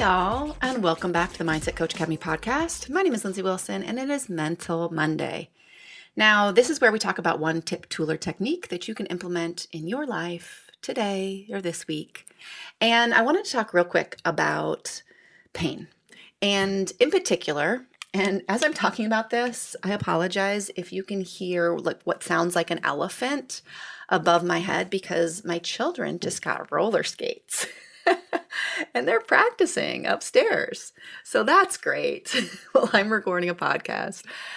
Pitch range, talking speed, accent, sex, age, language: 170-265 Hz, 165 wpm, American, female, 30-49, English